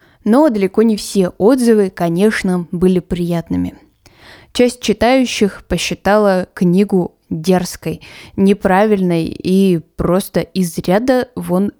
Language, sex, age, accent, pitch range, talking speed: Russian, female, 20-39, native, 180-245 Hz, 95 wpm